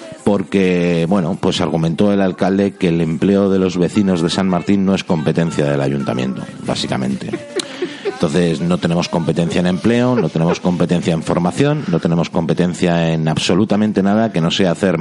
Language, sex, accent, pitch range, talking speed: Spanish, male, Spanish, 80-110 Hz, 170 wpm